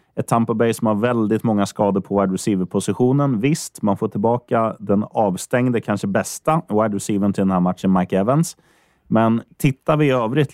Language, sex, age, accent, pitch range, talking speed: Swedish, male, 30-49, native, 95-125 Hz, 180 wpm